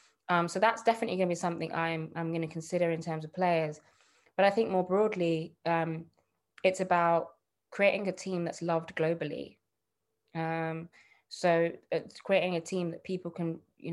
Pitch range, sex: 160-180 Hz, female